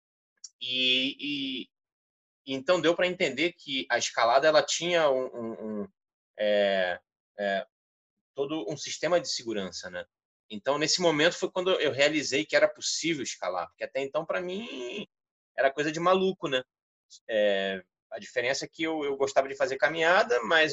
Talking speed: 160 wpm